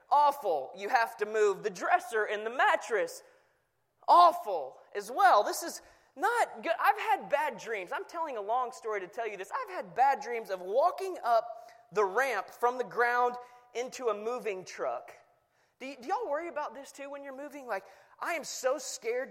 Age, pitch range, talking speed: 20-39, 205-305 Hz, 195 wpm